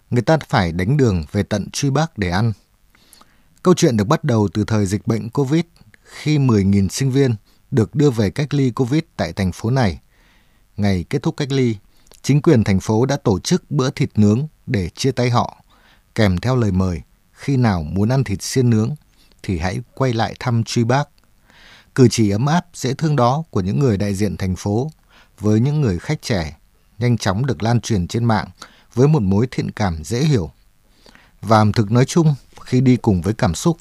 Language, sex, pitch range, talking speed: Vietnamese, male, 100-135 Hz, 205 wpm